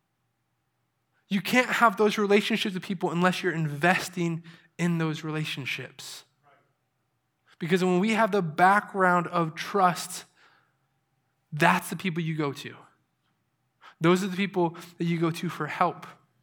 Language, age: English, 20-39